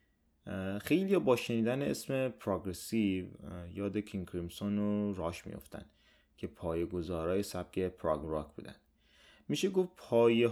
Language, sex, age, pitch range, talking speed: English, male, 30-49, 85-115 Hz, 115 wpm